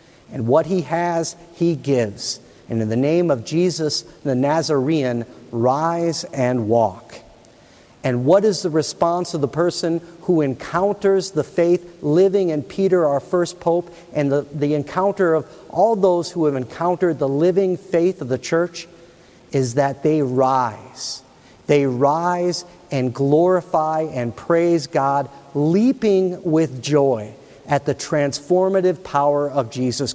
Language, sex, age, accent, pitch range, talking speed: English, male, 50-69, American, 135-180 Hz, 140 wpm